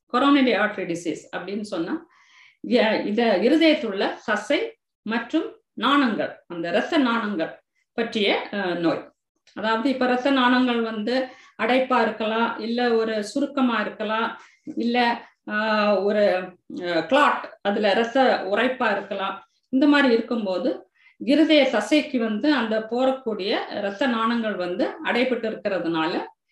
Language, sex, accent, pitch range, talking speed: Tamil, female, native, 200-270 Hz, 95 wpm